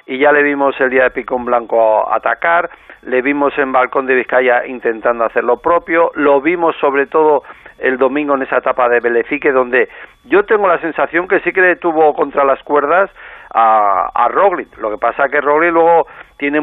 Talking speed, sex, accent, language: 195 wpm, male, Spanish, Spanish